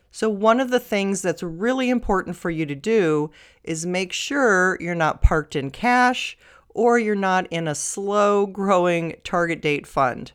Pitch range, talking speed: 155-200 Hz, 175 wpm